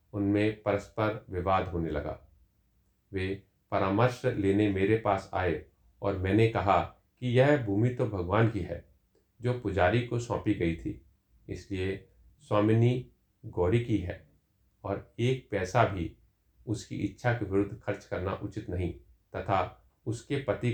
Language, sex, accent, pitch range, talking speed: Hindi, male, native, 95-110 Hz, 135 wpm